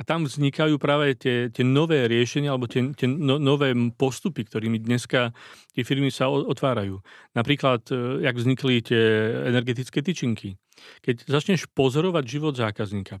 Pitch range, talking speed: 115-140 Hz, 145 wpm